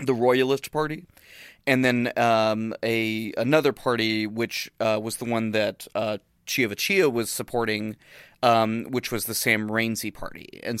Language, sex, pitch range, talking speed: English, male, 110-125 Hz, 150 wpm